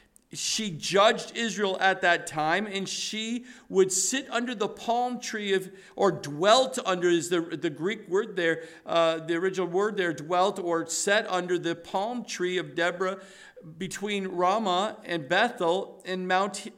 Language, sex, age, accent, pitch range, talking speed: English, male, 50-69, American, 195-255 Hz, 155 wpm